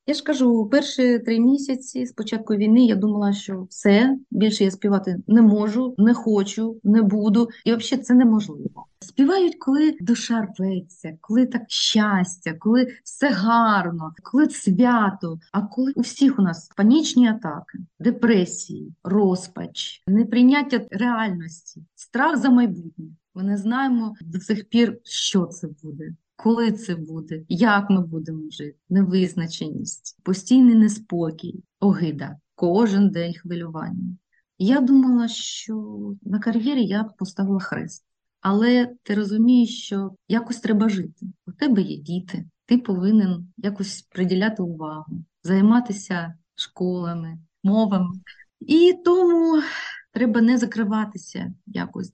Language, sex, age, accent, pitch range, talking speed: Ukrainian, female, 30-49, native, 185-235 Hz, 125 wpm